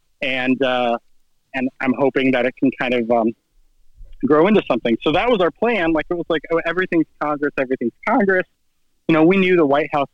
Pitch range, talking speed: 130-155 Hz, 205 wpm